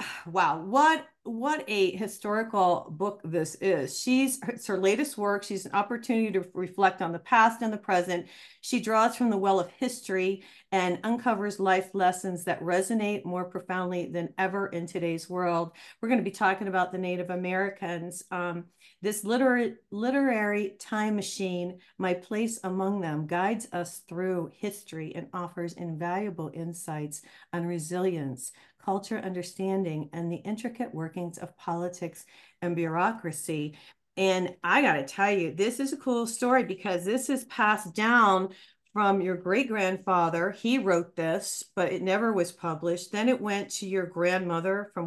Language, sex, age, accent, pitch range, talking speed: English, female, 40-59, American, 175-215 Hz, 155 wpm